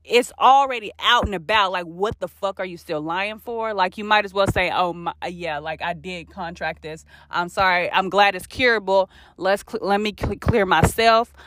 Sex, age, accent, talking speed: female, 20-39, American, 215 wpm